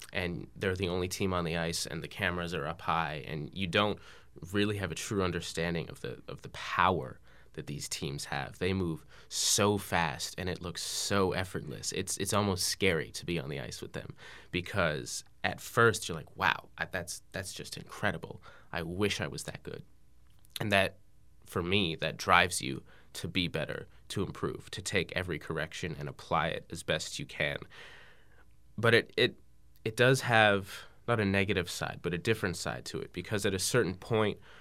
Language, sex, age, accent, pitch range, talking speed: French, male, 20-39, American, 85-100 Hz, 190 wpm